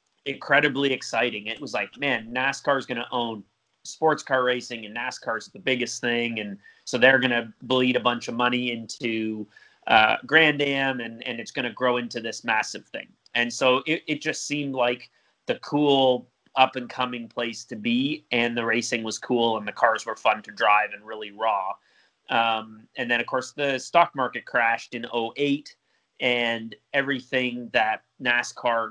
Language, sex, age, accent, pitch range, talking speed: English, male, 30-49, American, 115-130 Hz, 180 wpm